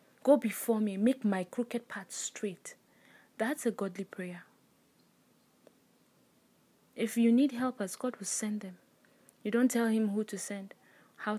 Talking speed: 150 wpm